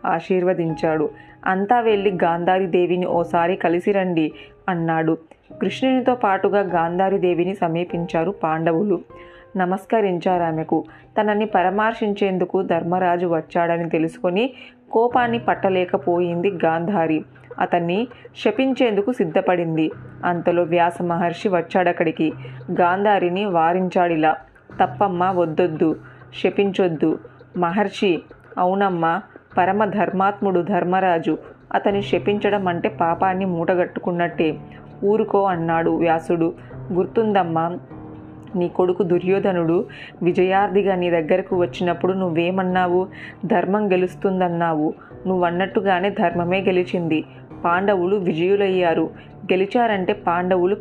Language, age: Telugu, 20-39